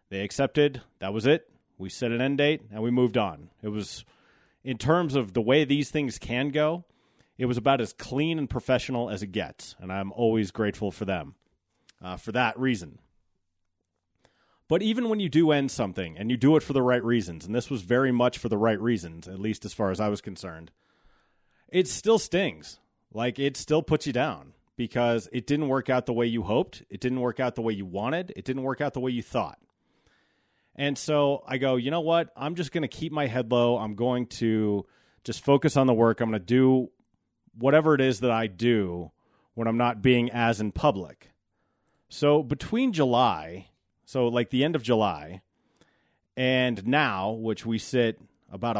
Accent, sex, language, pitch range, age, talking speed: American, male, English, 110-140 Hz, 30-49, 205 wpm